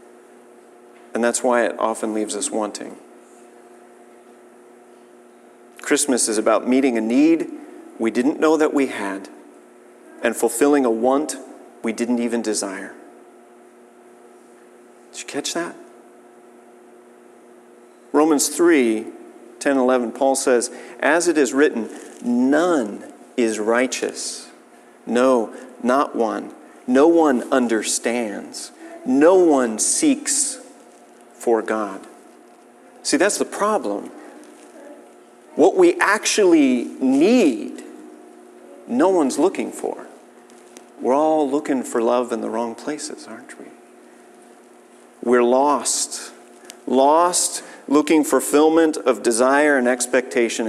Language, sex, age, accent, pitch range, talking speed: English, male, 40-59, American, 120-170 Hz, 105 wpm